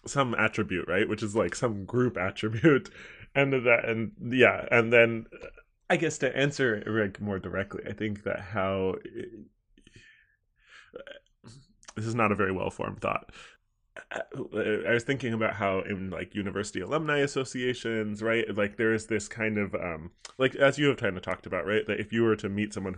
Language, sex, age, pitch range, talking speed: English, male, 20-39, 95-115 Hz, 175 wpm